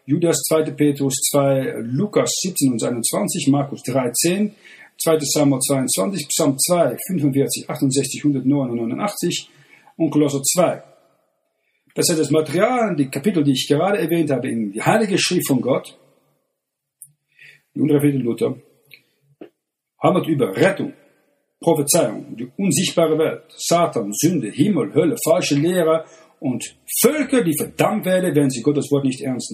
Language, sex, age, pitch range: German, male, 50-69, 140-165 Hz